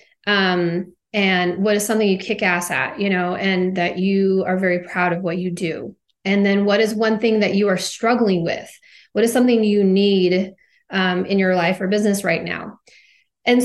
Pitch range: 190-245 Hz